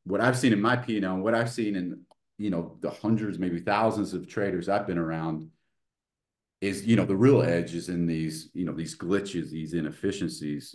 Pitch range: 85-115 Hz